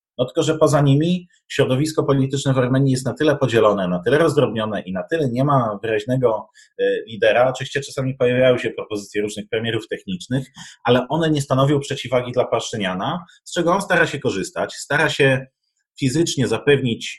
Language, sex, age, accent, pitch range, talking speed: Polish, male, 30-49, native, 110-145 Hz, 165 wpm